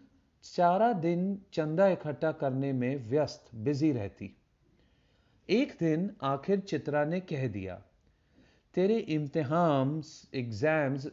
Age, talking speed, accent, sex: 40-59, 100 wpm, native, male